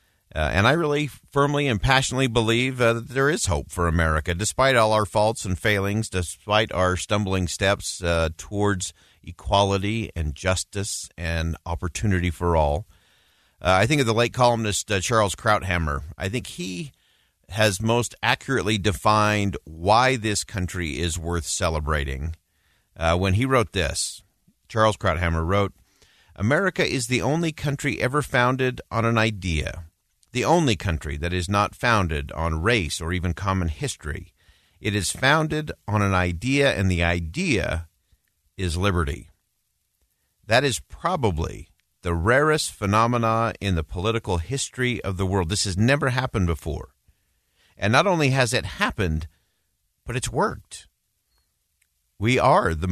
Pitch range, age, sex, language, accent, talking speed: 85-115 Hz, 50-69, male, English, American, 145 wpm